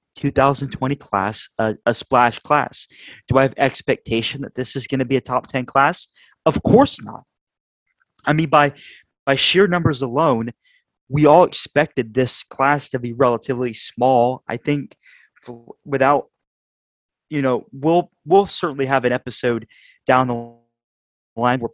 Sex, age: male, 30-49